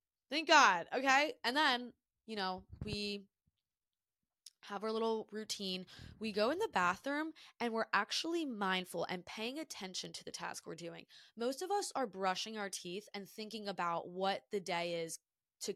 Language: English